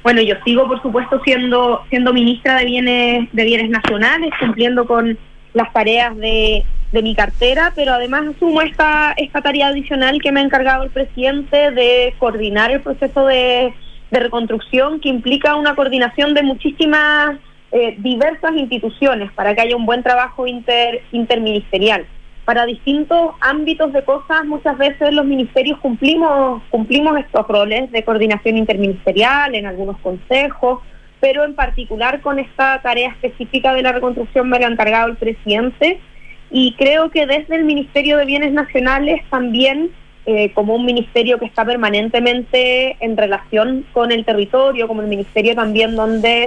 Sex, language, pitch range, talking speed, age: female, Spanish, 225-280 Hz, 155 wpm, 20-39